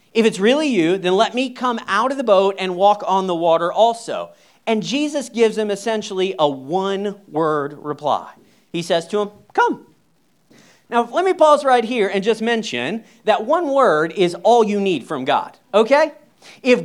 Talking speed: 180 wpm